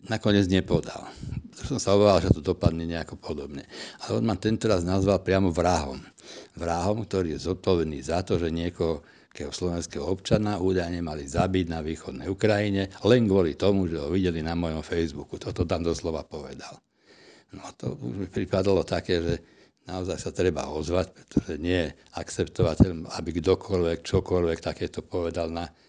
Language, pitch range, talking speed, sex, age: Slovak, 85-95 Hz, 160 wpm, male, 60-79